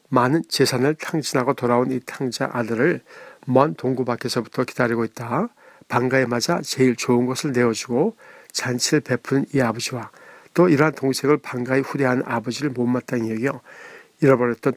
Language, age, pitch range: Korean, 60-79, 120-140 Hz